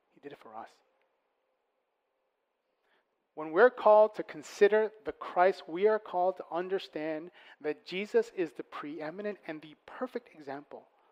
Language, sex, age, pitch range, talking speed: English, male, 30-49, 155-215 Hz, 135 wpm